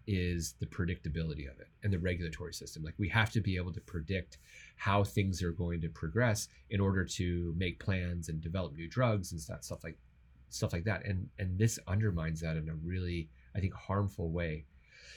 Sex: male